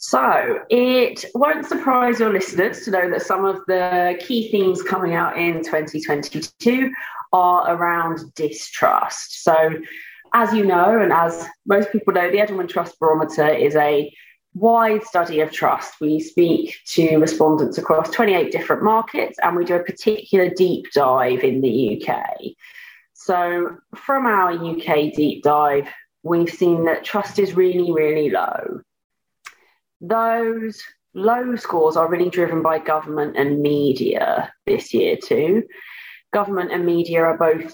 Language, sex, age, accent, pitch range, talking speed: English, female, 30-49, British, 160-215 Hz, 145 wpm